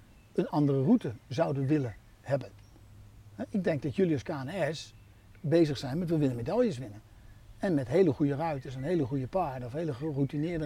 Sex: male